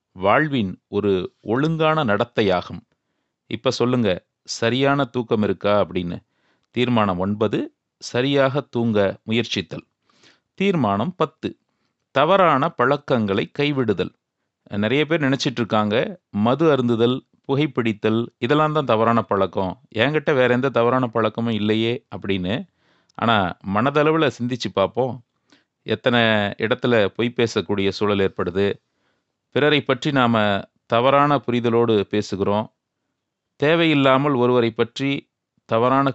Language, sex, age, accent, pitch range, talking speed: Tamil, male, 30-49, native, 110-145 Hz, 95 wpm